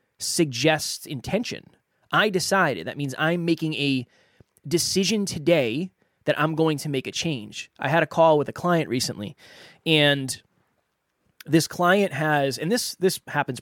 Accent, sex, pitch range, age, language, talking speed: American, male, 135-170 Hz, 20-39, English, 150 wpm